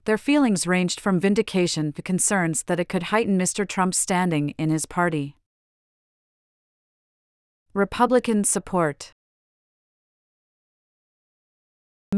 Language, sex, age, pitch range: English, female, 40-59, 165-195 Hz